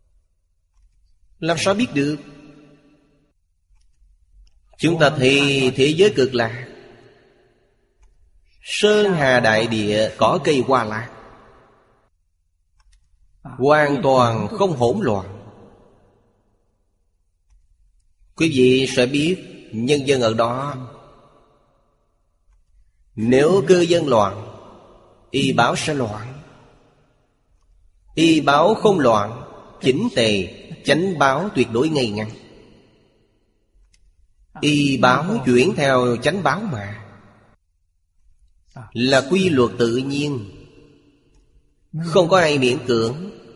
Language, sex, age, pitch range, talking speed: Vietnamese, male, 30-49, 95-140 Hz, 95 wpm